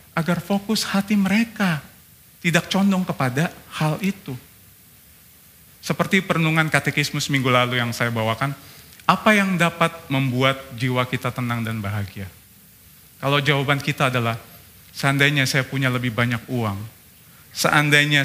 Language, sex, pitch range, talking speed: Indonesian, male, 120-165 Hz, 120 wpm